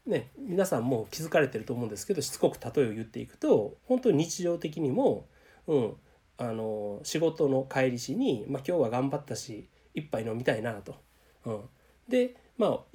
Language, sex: Japanese, male